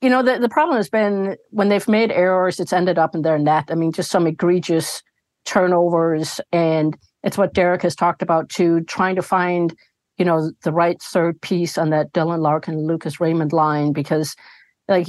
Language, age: English, 50-69